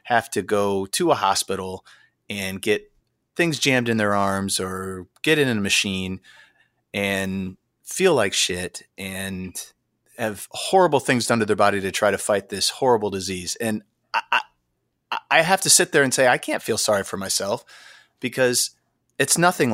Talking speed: 170 wpm